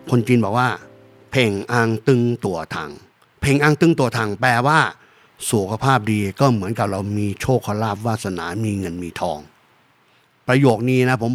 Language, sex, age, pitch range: Thai, male, 60-79, 105-130 Hz